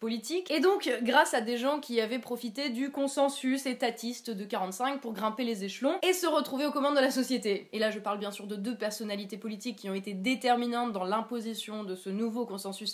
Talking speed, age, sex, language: 215 wpm, 20-39, female, French